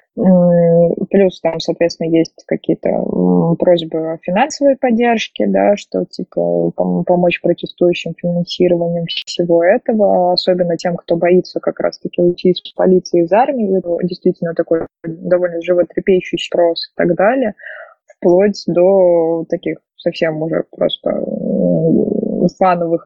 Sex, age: female, 20-39